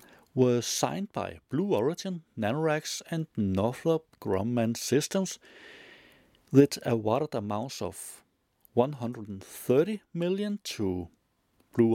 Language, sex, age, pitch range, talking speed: Danish, male, 60-79, 115-190 Hz, 90 wpm